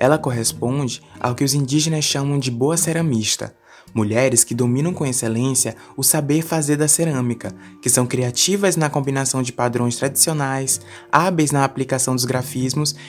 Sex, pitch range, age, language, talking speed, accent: male, 120-160 Hz, 20-39, Portuguese, 150 wpm, Brazilian